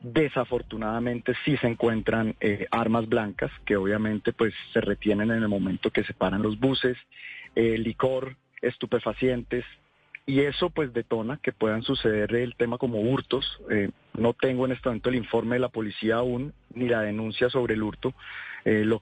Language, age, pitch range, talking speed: Spanish, 40-59, 110-125 Hz, 165 wpm